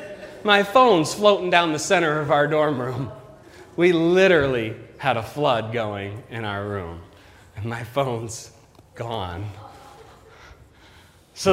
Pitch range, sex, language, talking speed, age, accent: 105-140 Hz, male, English, 125 wpm, 30-49, American